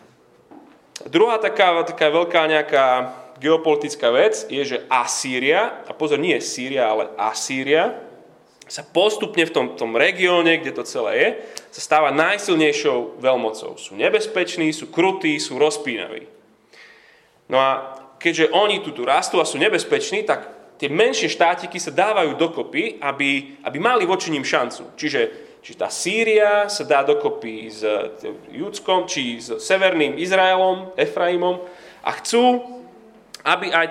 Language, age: Slovak, 30-49